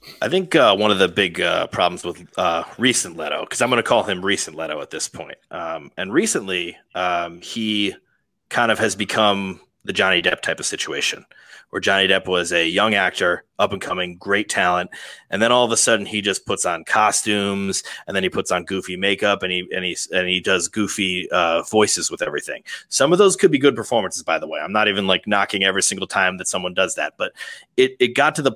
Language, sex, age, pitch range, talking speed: English, male, 30-49, 100-160 Hz, 230 wpm